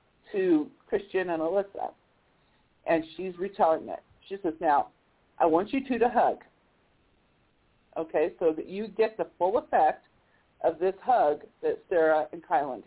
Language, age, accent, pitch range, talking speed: English, 50-69, American, 175-260 Hz, 150 wpm